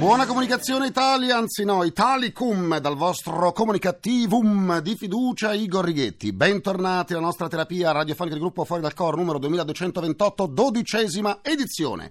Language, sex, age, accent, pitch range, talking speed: Italian, male, 50-69, native, 125-200 Hz, 135 wpm